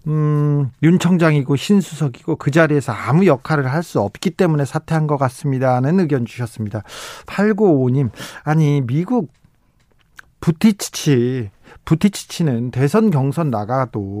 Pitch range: 130-180 Hz